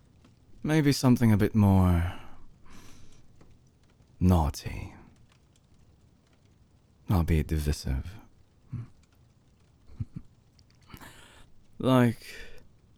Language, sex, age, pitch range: English, male, 20-39, 85-115 Hz